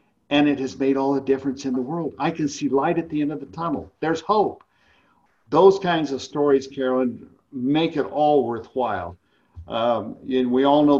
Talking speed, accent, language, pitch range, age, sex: 195 wpm, American, English, 120-145 Hz, 50-69, male